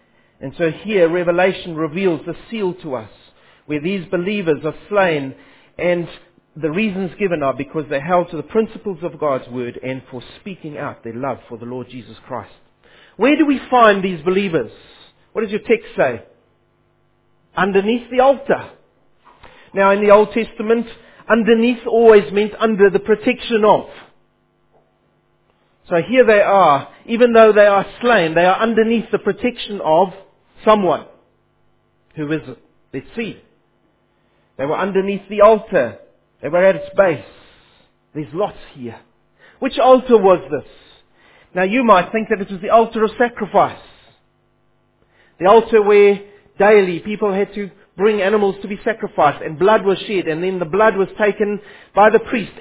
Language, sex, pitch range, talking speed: English, male, 165-220 Hz, 155 wpm